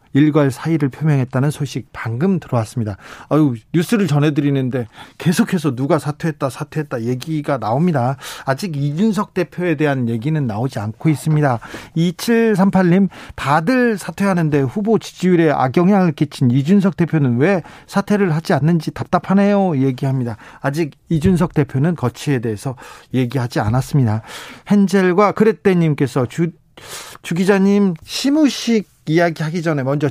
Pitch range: 130-180 Hz